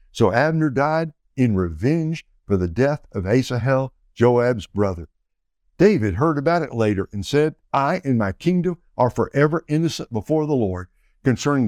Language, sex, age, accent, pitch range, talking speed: English, male, 60-79, American, 105-150 Hz, 155 wpm